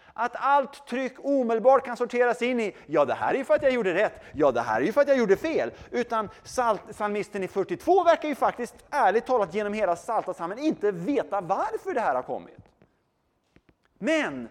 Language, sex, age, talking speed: Swedish, male, 30-49, 200 wpm